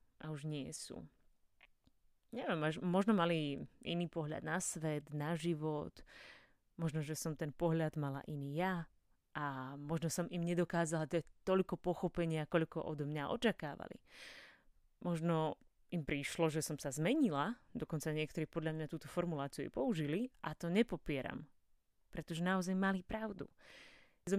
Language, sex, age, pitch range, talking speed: Slovak, female, 30-49, 150-185 Hz, 135 wpm